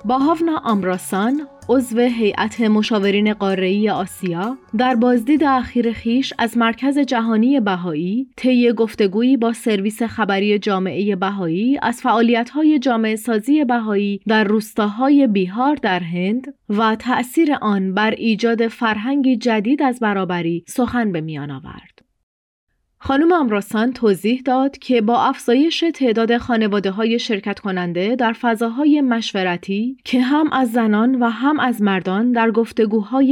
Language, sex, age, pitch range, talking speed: Persian, female, 30-49, 205-255 Hz, 130 wpm